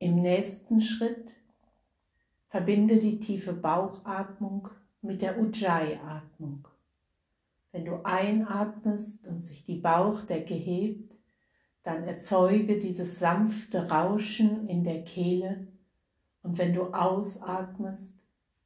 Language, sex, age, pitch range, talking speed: German, female, 60-79, 170-205 Hz, 100 wpm